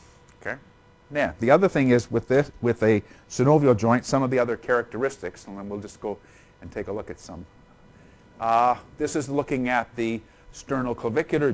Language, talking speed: English, 180 wpm